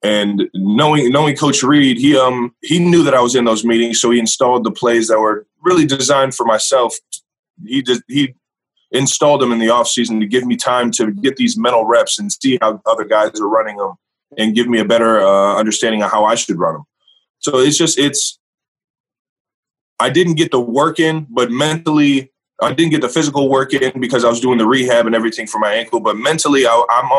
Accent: American